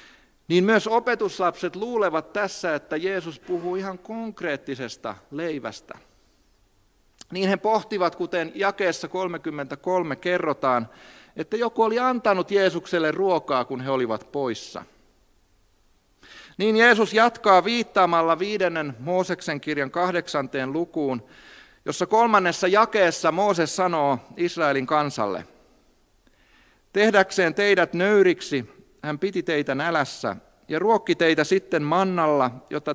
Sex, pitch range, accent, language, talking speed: male, 140-200 Hz, native, Finnish, 105 wpm